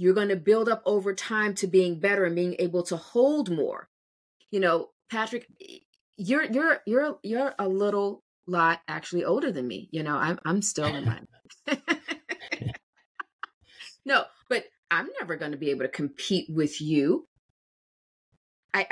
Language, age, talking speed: English, 30-49, 160 wpm